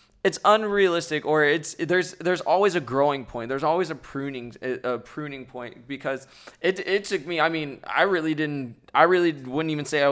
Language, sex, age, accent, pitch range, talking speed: English, male, 20-39, American, 125-165 Hz, 195 wpm